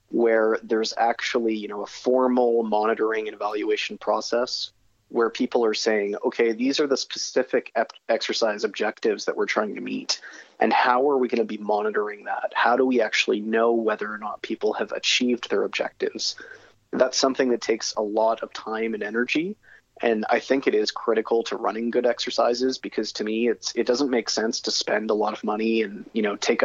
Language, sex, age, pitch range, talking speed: English, male, 30-49, 110-125 Hz, 200 wpm